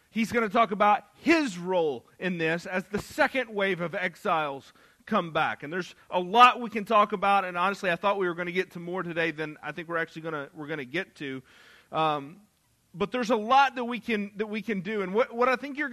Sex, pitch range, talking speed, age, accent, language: male, 175-240 Hz, 250 wpm, 40-59, American, English